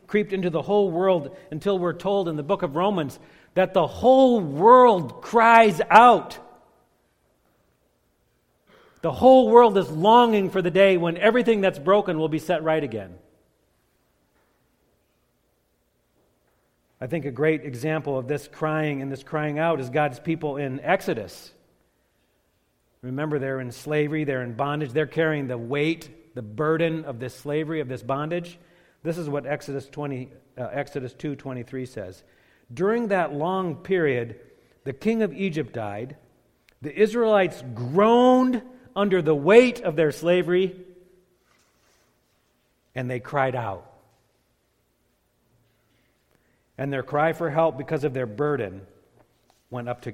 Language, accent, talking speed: English, American, 135 wpm